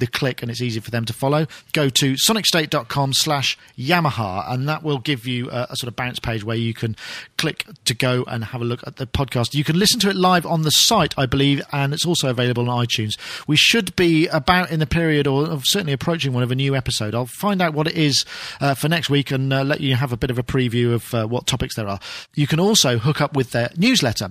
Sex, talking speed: male, 260 wpm